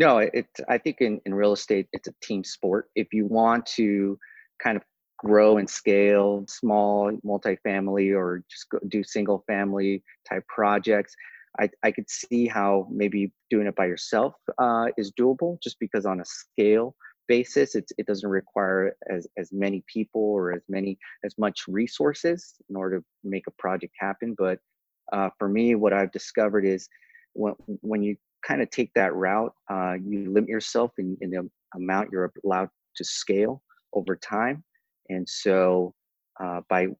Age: 30-49